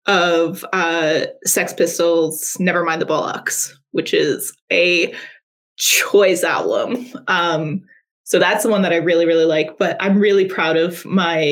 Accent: American